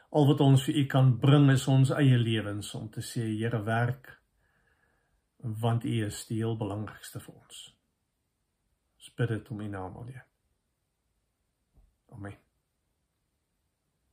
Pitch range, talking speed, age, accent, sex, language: 120-140 Hz, 130 wpm, 50-69, Dutch, male, English